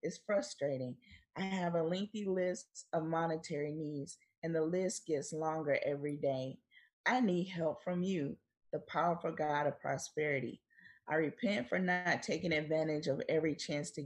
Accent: American